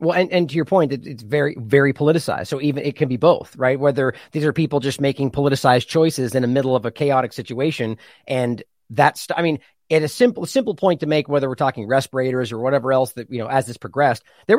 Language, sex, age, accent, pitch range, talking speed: English, male, 30-49, American, 130-160 Hz, 245 wpm